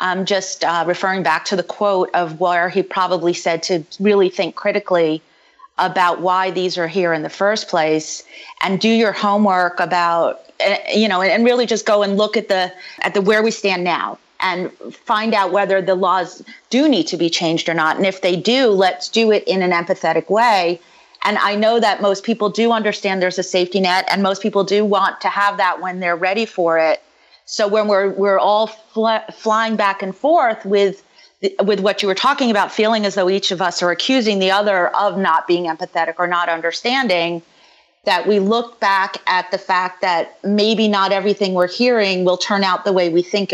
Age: 30-49